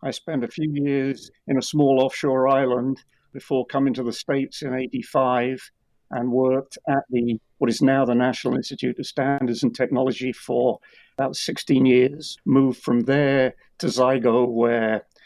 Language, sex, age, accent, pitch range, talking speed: English, male, 50-69, British, 115-130 Hz, 160 wpm